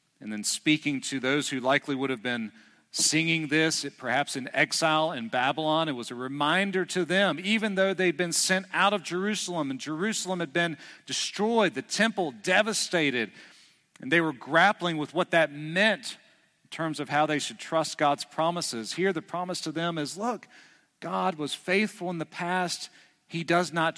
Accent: American